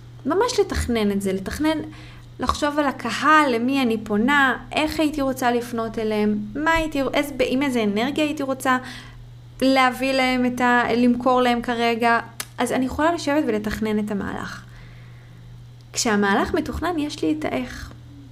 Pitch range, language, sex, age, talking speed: 205-275 Hz, Hebrew, female, 20-39, 140 wpm